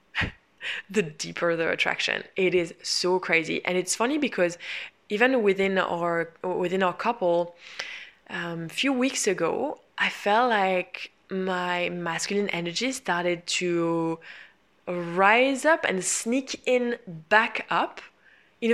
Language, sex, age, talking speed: English, female, 20-39, 125 wpm